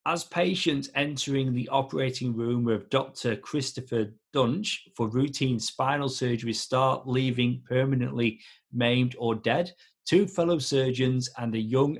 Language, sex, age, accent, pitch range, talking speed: English, male, 40-59, British, 115-140 Hz, 130 wpm